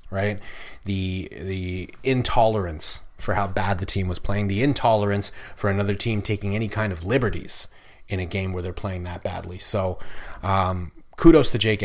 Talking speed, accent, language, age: 170 wpm, American, English, 30-49